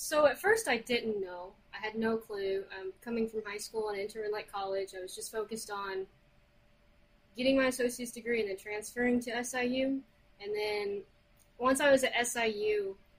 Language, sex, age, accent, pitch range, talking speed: English, female, 20-39, American, 210-265 Hz, 180 wpm